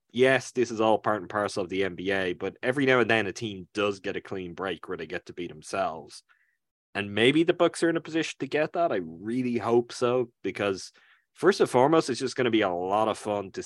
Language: English